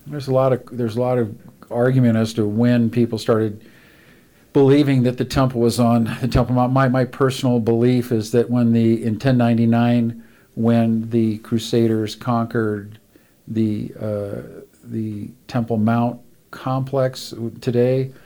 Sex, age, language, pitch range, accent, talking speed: male, 50-69, English, 110-120 Hz, American, 145 wpm